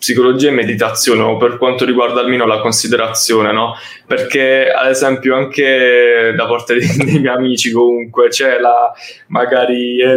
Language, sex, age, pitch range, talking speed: Italian, male, 10-29, 115-135 Hz, 150 wpm